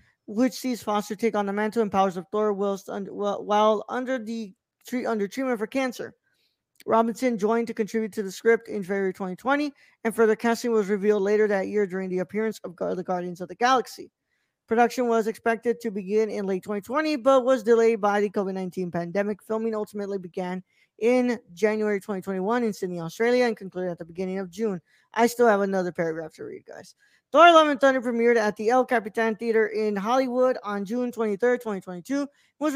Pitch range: 200-245 Hz